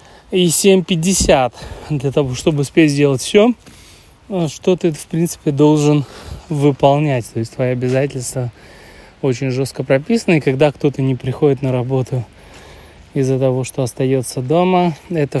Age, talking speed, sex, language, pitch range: 20-39, 130 wpm, male, Russian, 125-150 Hz